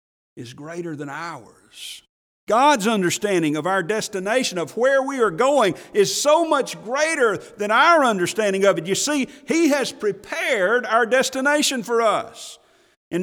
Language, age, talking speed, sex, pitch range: English, 50-69, 150 wpm, male, 215-280 Hz